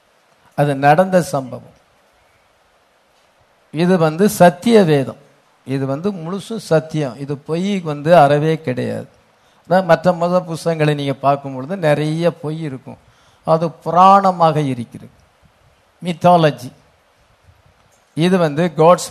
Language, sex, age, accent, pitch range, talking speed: English, male, 50-69, Indian, 145-185 Hz, 65 wpm